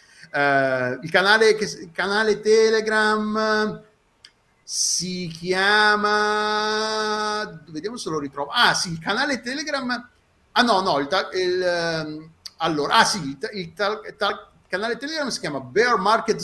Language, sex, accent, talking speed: Italian, male, native, 135 wpm